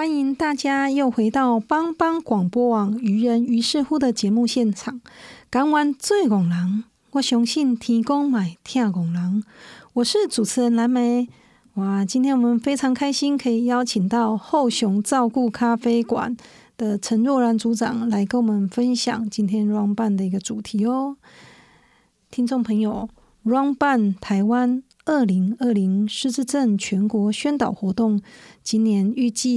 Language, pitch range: Chinese, 210-250 Hz